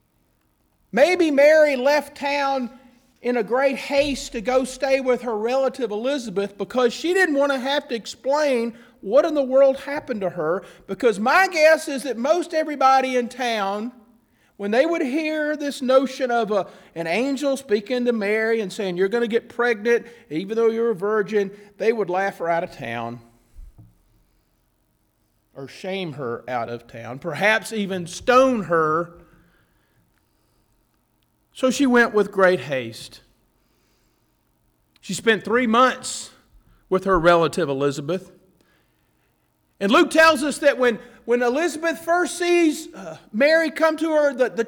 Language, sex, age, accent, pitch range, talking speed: English, male, 40-59, American, 205-285 Hz, 150 wpm